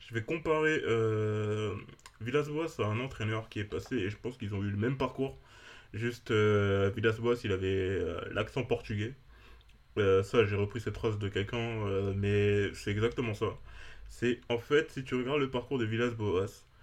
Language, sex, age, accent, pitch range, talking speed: French, male, 20-39, French, 105-125 Hz, 180 wpm